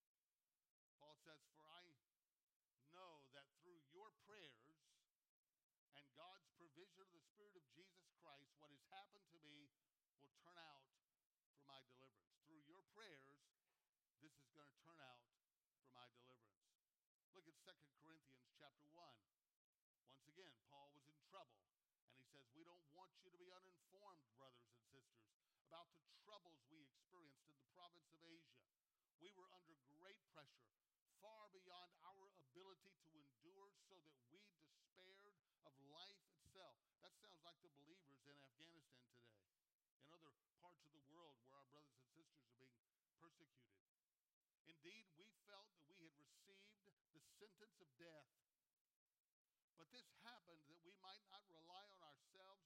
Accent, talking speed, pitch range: American, 155 wpm, 140-180 Hz